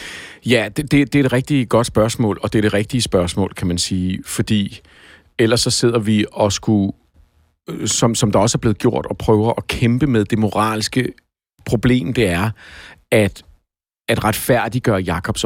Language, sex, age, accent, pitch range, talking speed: Danish, male, 50-69, native, 105-130 Hz, 180 wpm